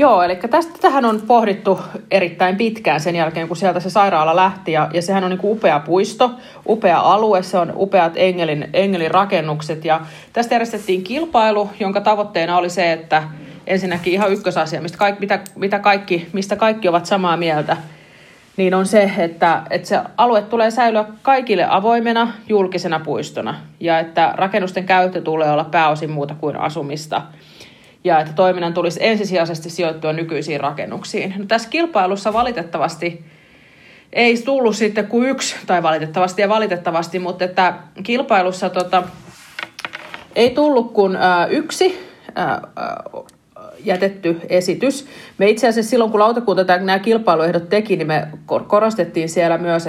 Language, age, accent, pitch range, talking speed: Finnish, 30-49, native, 165-210 Hz, 145 wpm